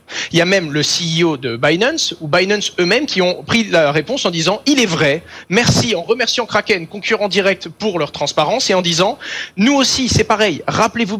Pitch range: 165-230 Hz